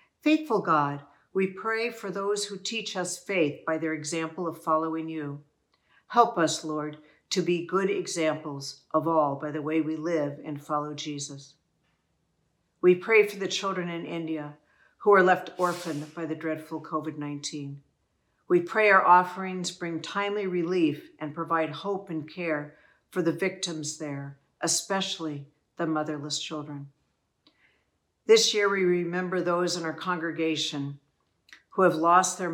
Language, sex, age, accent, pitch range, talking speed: English, female, 60-79, American, 155-185 Hz, 150 wpm